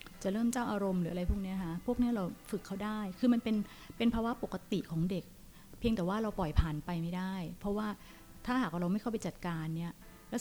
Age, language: 30-49, Thai